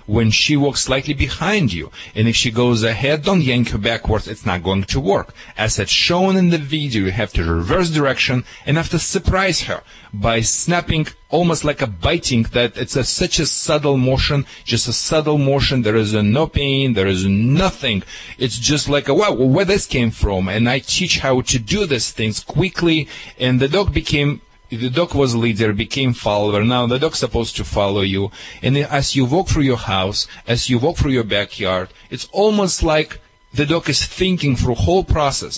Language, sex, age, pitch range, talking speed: English, male, 40-59, 110-155 Hz, 195 wpm